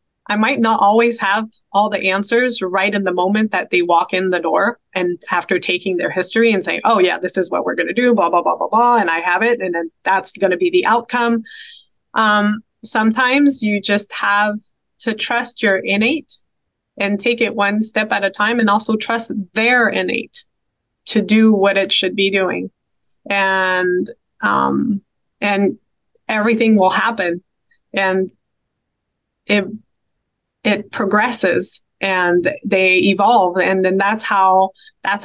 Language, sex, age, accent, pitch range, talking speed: English, female, 20-39, American, 185-220 Hz, 165 wpm